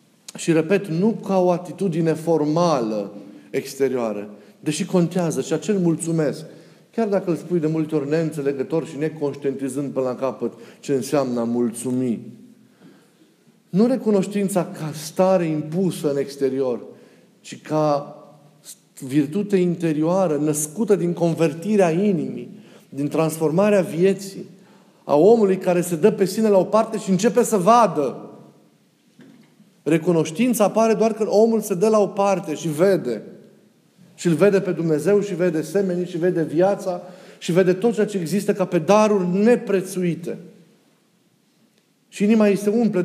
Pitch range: 155-200 Hz